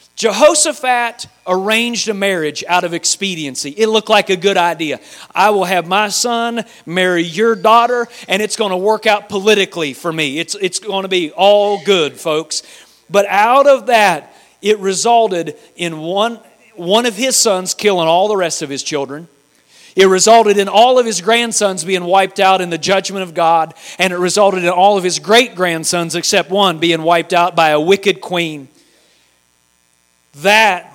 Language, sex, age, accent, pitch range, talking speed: English, male, 40-59, American, 155-205 Hz, 175 wpm